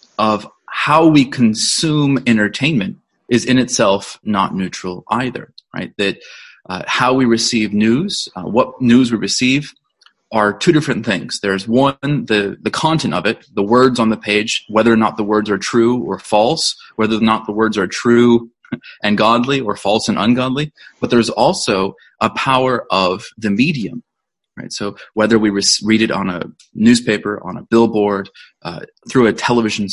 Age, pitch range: 30-49, 105-130 Hz